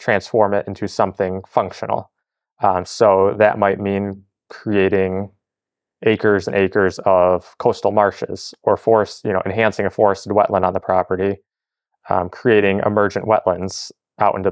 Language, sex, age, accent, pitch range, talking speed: English, male, 20-39, American, 95-115 Hz, 140 wpm